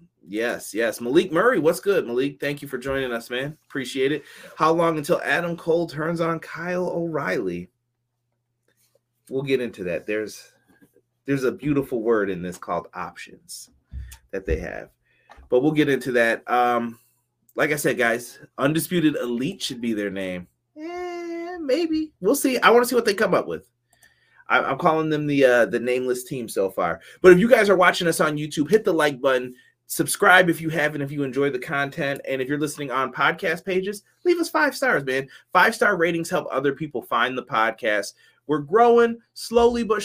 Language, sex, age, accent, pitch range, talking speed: English, male, 30-49, American, 125-170 Hz, 185 wpm